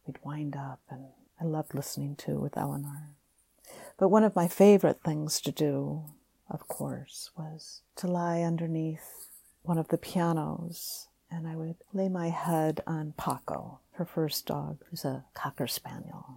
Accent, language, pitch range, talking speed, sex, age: American, English, 150-175 Hz, 160 wpm, female, 50-69